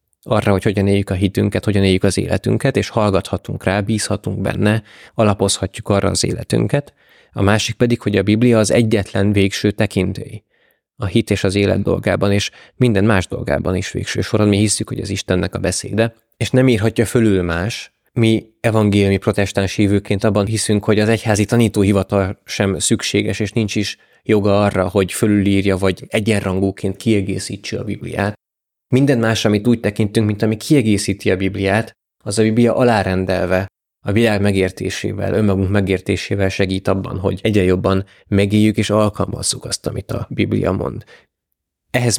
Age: 20-39